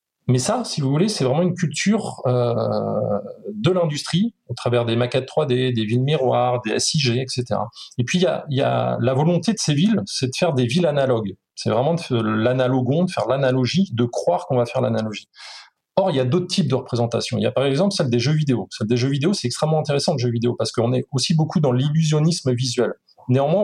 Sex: male